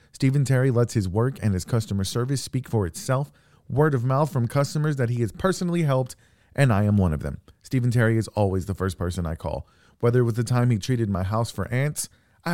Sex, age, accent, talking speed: male, 40-59, American, 235 wpm